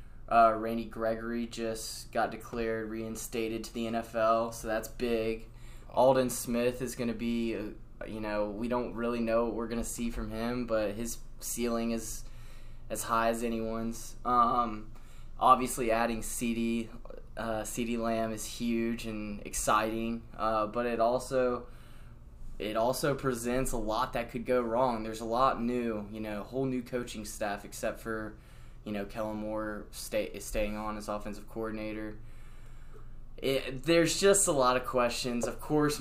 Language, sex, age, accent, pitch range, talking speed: English, male, 20-39, American, 110-120 Hz, 155 wpm